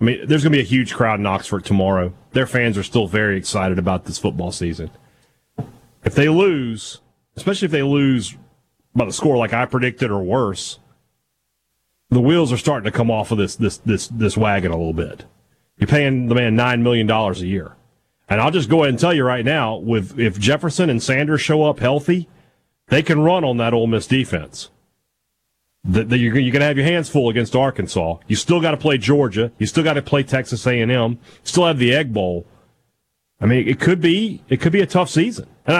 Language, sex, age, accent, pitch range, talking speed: English, male, 40-59, American, 110-150 Hz, 210 wpm